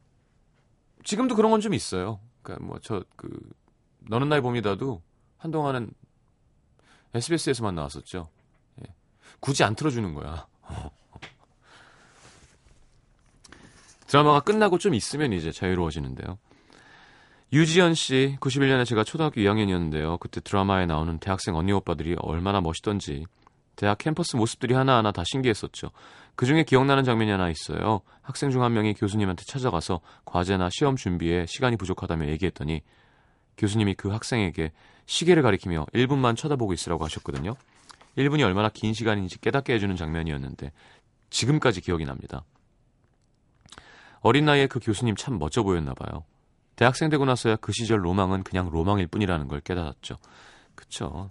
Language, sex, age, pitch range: Korean, male, 30-49, 90-130 Hz